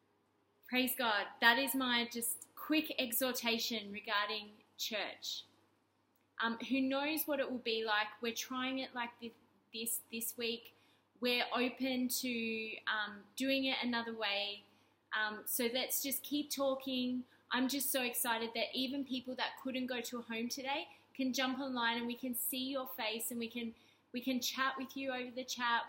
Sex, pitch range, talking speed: female, 230-265 Hz, 170 wpm